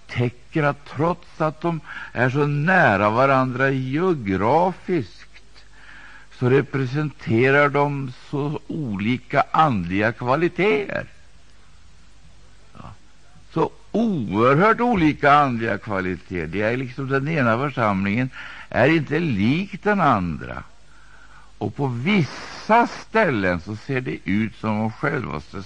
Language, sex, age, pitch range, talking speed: Swedish, male, 60-79, 90-145 Hz, 105 wpm